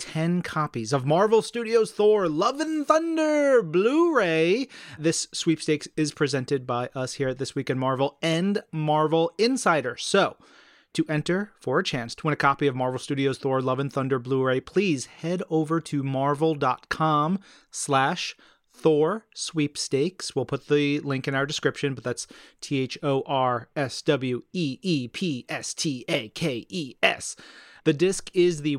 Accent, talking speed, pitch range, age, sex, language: American, 135 wpm, 140-185 Hz, 30-49, male, English